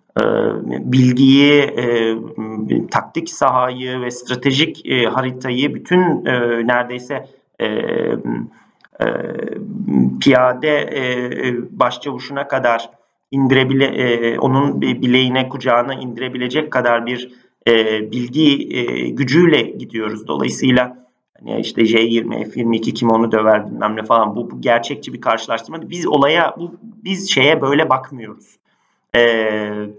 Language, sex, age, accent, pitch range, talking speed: Turkish, male, 40-59, native, 115-140 Hz, 110 wpm